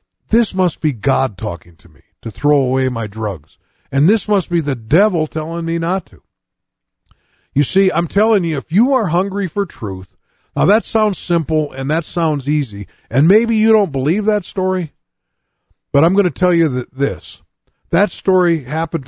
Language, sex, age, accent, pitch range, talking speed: English, male, 50-69, American, 115-175 Hz, 185 wpm